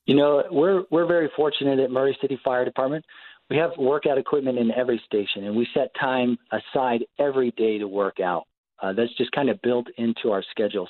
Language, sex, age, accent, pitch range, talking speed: English, male, 40-59, American, 105-130 Hz, 205 wpm